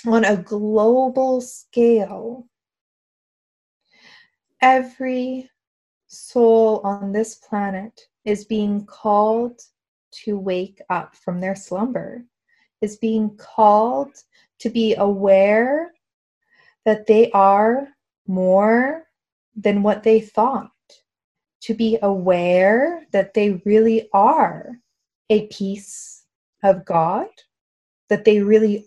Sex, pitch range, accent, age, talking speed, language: female, 210-255 Hz, American, 20-39, 95 wpm, English